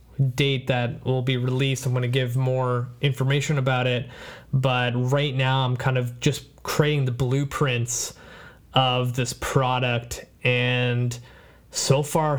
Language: English